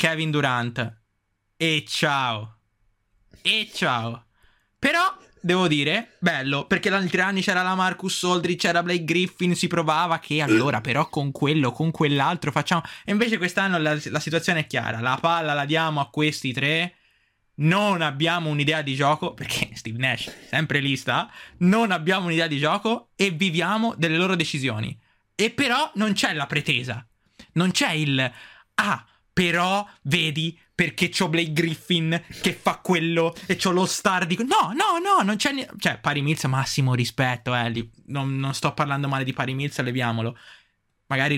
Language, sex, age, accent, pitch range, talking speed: Italian, male, 20-39, native, 125-180 Hz, 160 wpm